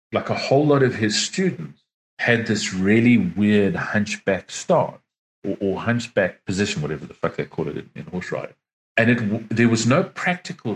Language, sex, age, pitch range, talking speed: English, male, 40-59, 105-140 Hz, 185 wpm